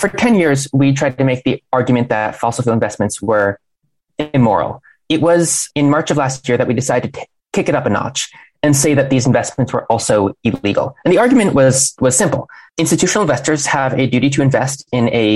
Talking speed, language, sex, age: 210 wpm, English, male, 20-39